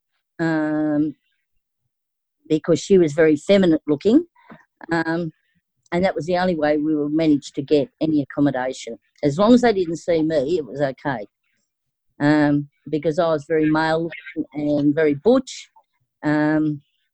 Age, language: 50-69, English